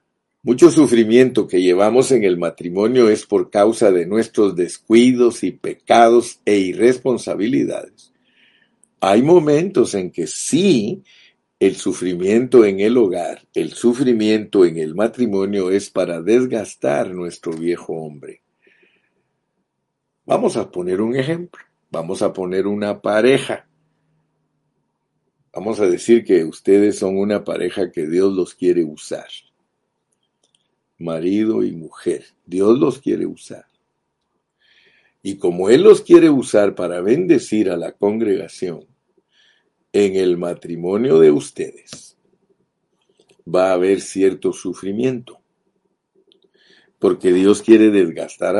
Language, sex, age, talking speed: Spanish, male, 50-69, 115 wpm